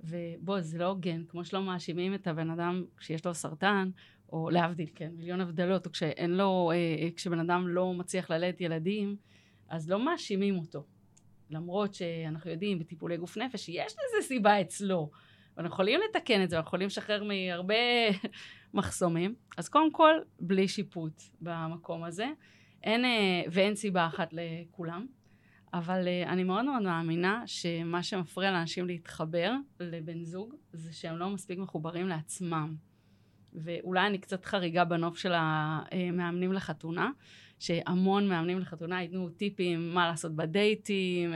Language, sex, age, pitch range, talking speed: Hebrew, female, 30-49, 165-195 Hz, 145 wpm